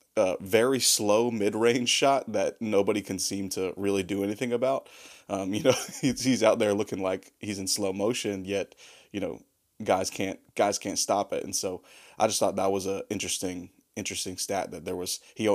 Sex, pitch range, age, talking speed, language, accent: male, 95-110 Hz, 20-39, 200 wpm, English, American